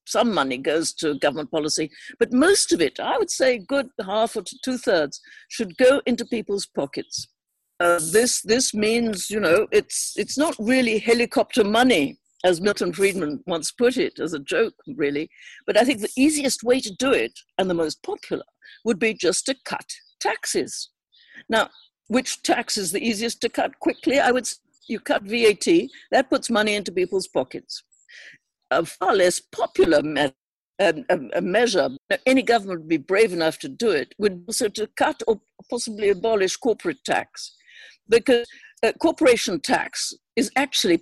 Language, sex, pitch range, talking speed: English, female, 195-270 Hz, 170 wpm